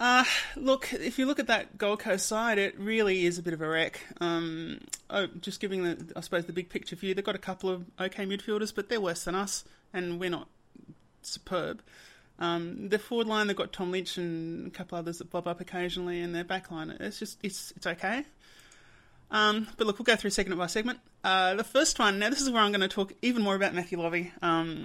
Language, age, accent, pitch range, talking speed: English, 20-39, Australian, 175-210 Hz, 235 wpm